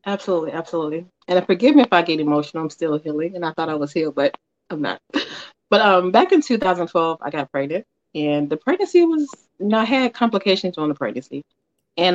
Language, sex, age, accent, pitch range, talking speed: English, female, 30-49, American, 150-205 Hz, 200 wpm